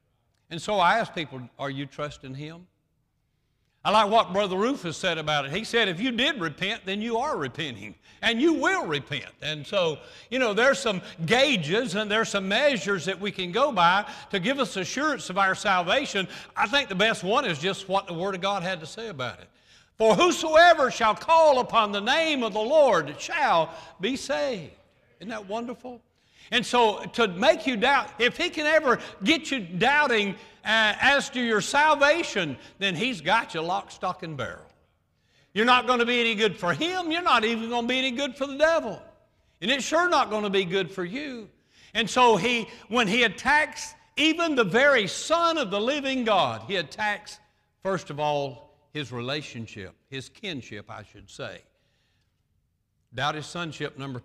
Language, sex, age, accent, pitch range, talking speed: English, male, 60-79, American, 160-250 Hz, 190 wpm